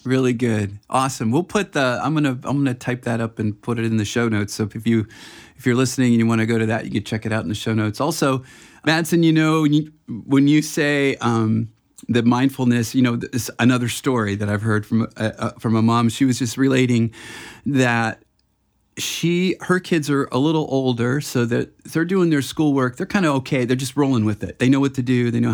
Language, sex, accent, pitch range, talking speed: English, male, American, 115-160 Hz, 235 wpm